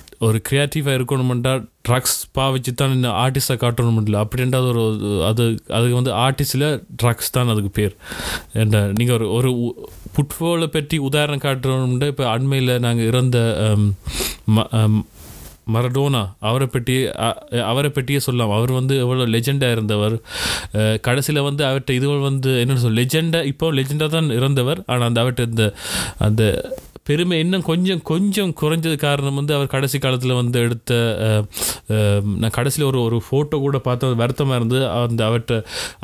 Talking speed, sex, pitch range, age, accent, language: 135 wpm, male, 115-140 Hz, 30-49, native, Tamil